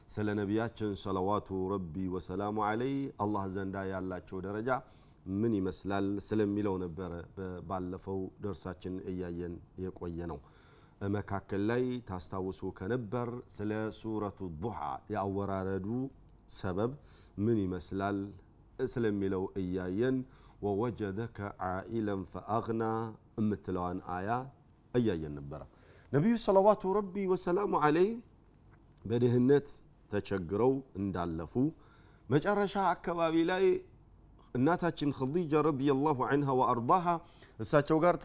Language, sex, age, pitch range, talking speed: Amharic, male, 40-59, 95-140 Hz, 95 wpm